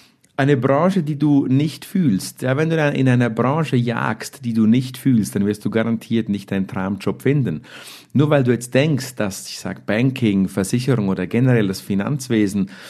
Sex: male